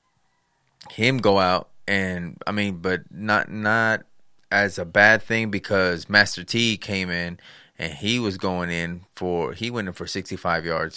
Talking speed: 170 wpm